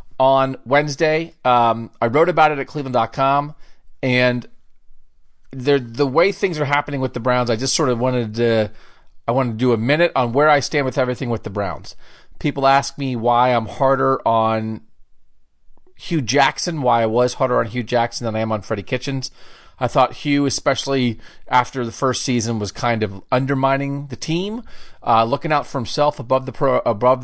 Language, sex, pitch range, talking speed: English, male, 115-140 Hz, 180 wpm